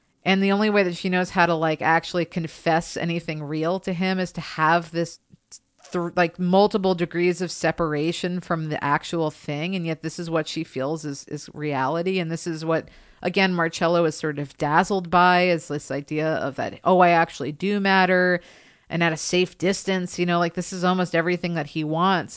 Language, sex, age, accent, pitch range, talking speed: English, female, 40-59, American, 155-185 Hz, 205 wpm